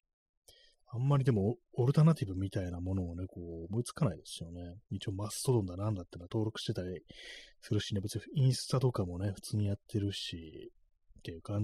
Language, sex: Japanese, male